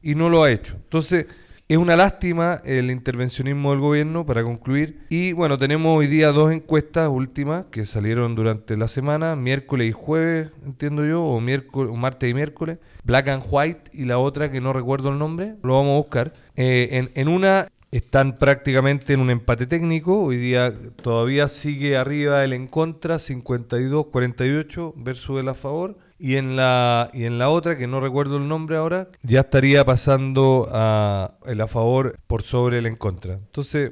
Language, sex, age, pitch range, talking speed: Spanish, male, 40-59, 115-145 Hz, 180 wpm